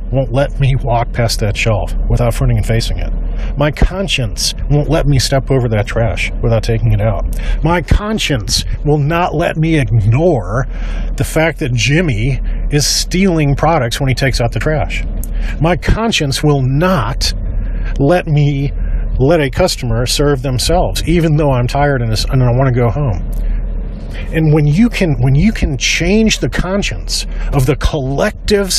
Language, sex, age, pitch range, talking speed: English, male, 40-59, 115-165 Hz, 165 wpm